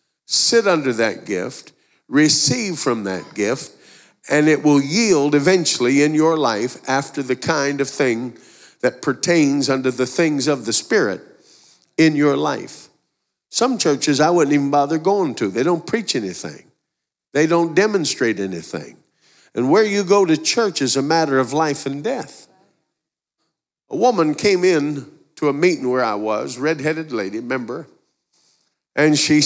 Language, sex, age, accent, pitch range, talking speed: English, male, 50-69, American, 140-185 Hz, 155 wpm